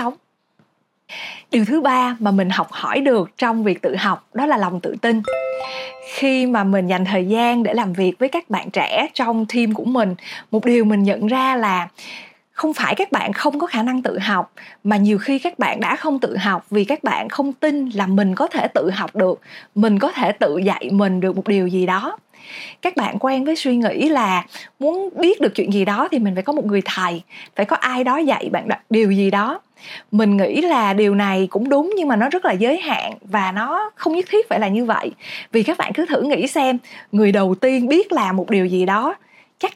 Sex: female